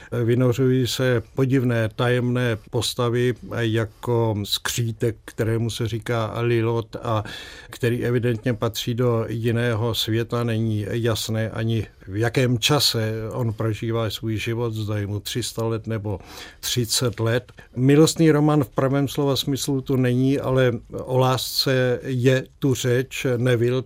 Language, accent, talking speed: Czech, native, 125 wpm